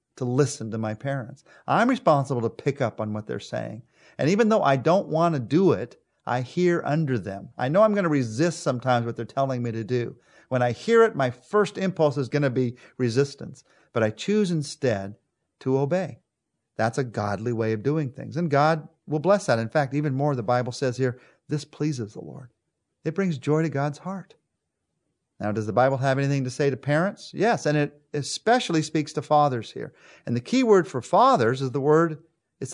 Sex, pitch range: male, 125-165 Hz